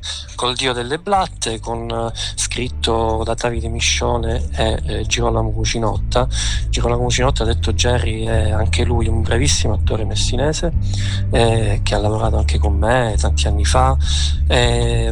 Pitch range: 80-120 Hz